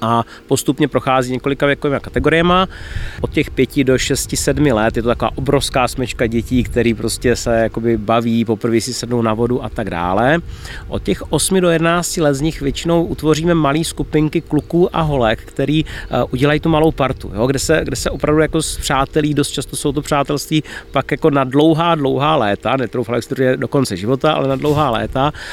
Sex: male